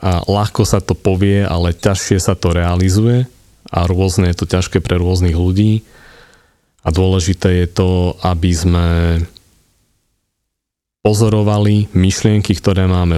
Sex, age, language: male, 30-49, Slovak